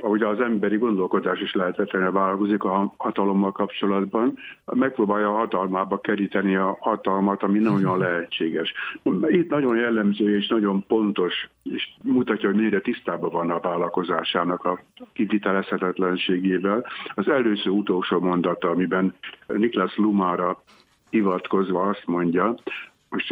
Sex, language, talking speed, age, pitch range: male, Hungarian, 120 wpm, 60-79, 95-110 Hz